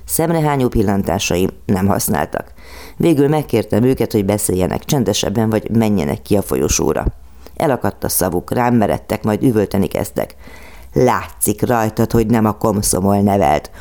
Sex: female